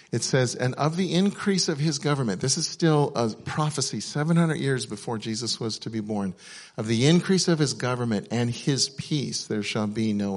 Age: 50-69